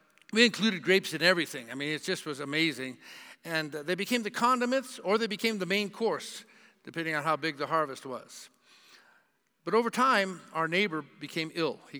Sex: male